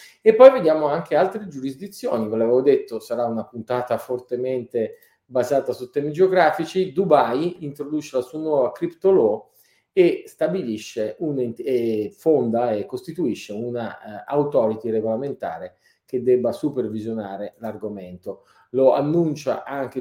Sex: male